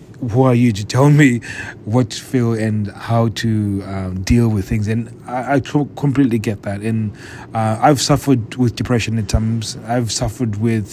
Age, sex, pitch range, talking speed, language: 30-49, male, 105-130 Hz, 180 wpm, English